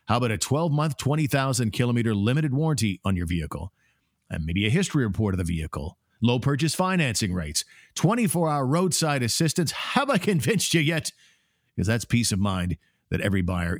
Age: 50-69